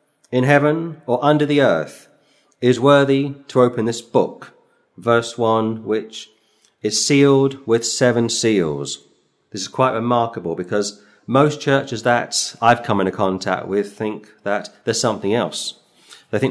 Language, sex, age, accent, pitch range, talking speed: English, male, 40-59, British, 110-130 Hz, 145 wpm